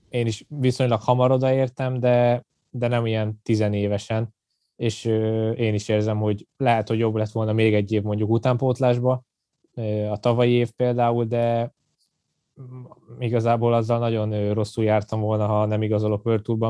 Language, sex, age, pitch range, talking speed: Hungarian, male, 20-39, 110-120 Hz, 145 wpm